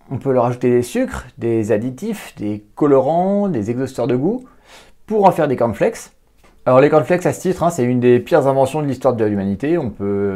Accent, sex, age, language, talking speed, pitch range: French, male, 40-59, French, 215 wpm, 105-135 Hz